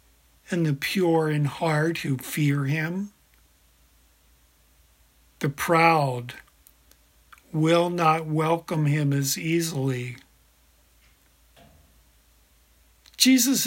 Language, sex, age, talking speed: English, male, 50-69, 75 wpm